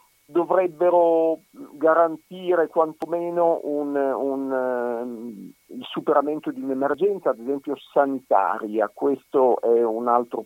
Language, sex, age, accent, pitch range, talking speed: Italian, male, 50-69, native, 120-175 Hz, 80 wpm